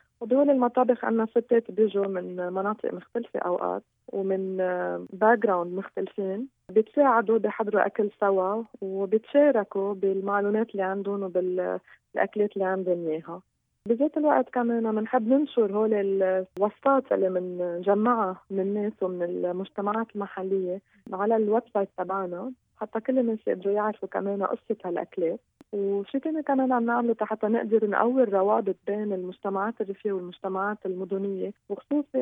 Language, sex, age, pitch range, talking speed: Arabic, female, 20-39, 190-230 Hz, 125 wpm